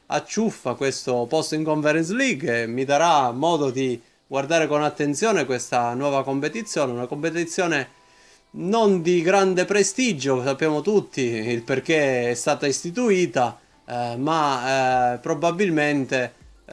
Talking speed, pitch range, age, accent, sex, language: 120 wpm, 120-165 Hz, 30-49, native, male, Italian